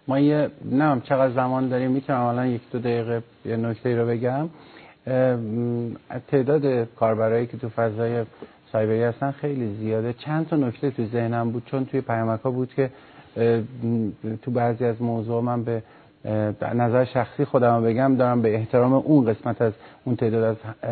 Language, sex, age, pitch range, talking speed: Persian, male, 50-69, 115-135 Hz, 170 wpm